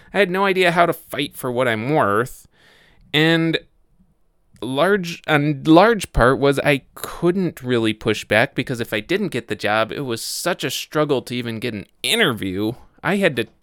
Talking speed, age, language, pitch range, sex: 185 wpm, 20-39, English, 110-165 Hz, male